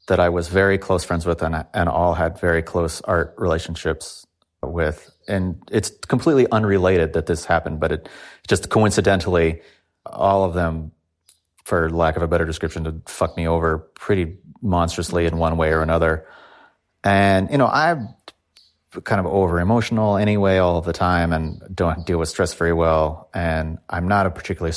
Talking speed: 170 wpm